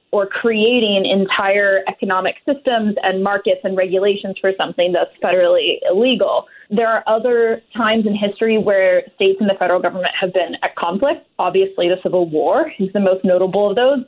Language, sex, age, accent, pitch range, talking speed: English, female, 20-39, American, 185-230 Hz, 165 wpm